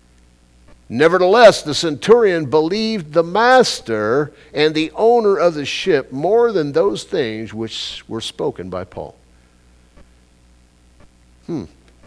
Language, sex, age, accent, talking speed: English, male, 50-69, American, 110 wpm